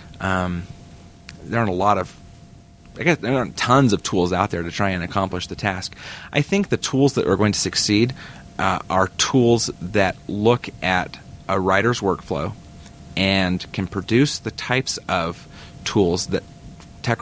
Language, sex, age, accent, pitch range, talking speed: English, male, 30-49, American, 90-110 Hz, 165 wpm